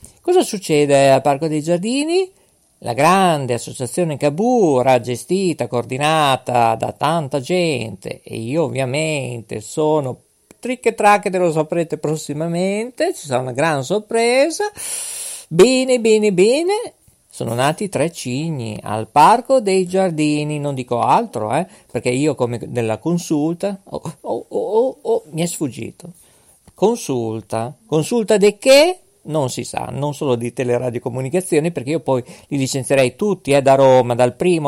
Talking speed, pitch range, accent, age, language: 140 wpm, 130-200 Hz, native, 50-69, Italian